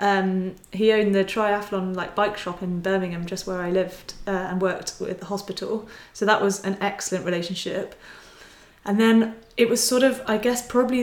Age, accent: 30-49, British